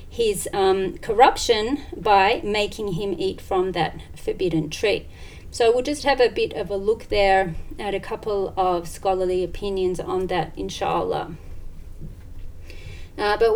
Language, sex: English, female